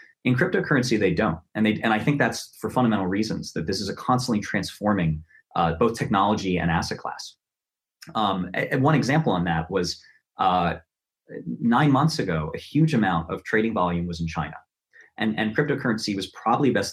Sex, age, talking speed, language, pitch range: male, 30-49, 180 wpm, English, 85-110 Hz